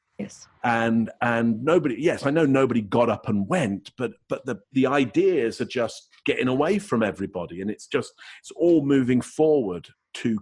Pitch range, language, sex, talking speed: 100-120 Hz, English, male, 175 wpm